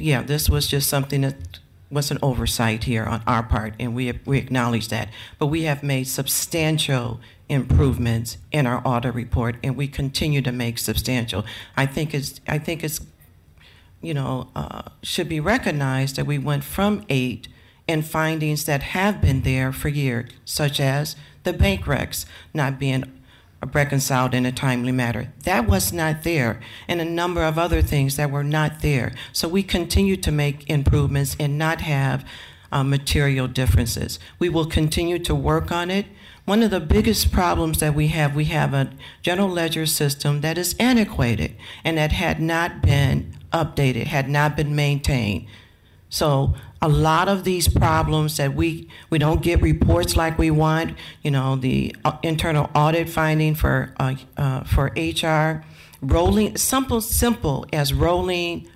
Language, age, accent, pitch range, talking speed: English, 50-69, American, 125-160 Hz, 165 wpm